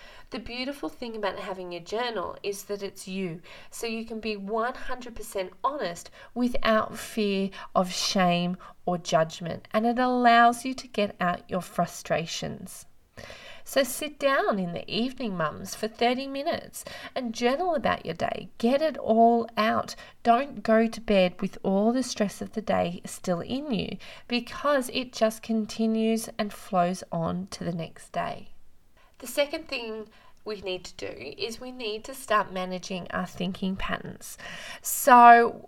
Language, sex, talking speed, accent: English, female, 155 wpm, Australian